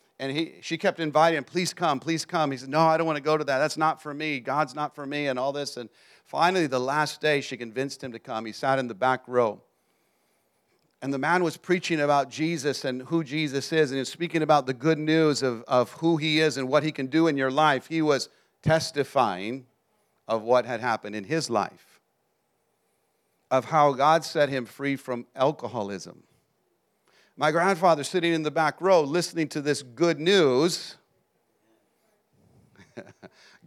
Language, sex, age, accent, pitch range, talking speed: English, male, 40-59, American, 130-165 Hz, 190 wpm